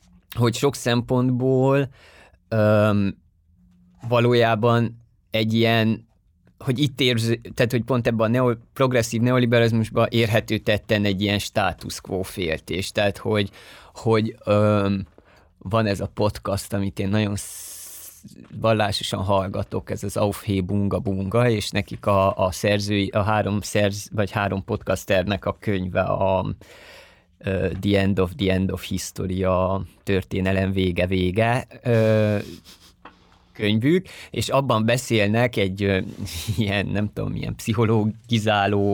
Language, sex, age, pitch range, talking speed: Hungarian, male, 20-39, 100-115 Hz, 115 wpm